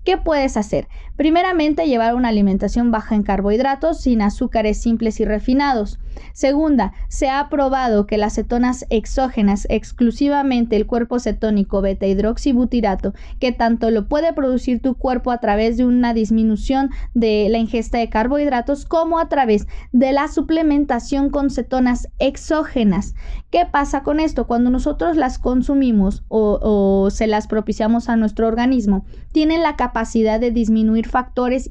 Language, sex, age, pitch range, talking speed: Spanish, female, 20-39, 220-275 Hz, 150 wpm